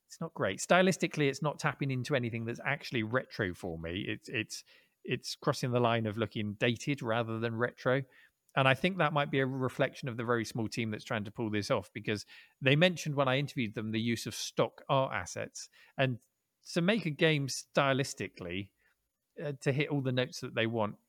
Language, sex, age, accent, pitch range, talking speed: English, male, 40-59, British, 110-150 Hz, 210 wpm